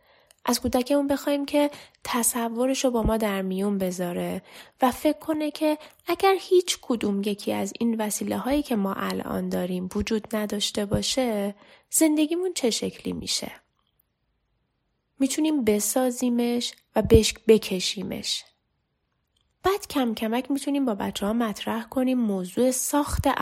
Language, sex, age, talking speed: Persian, female, 20-39, 125 wpm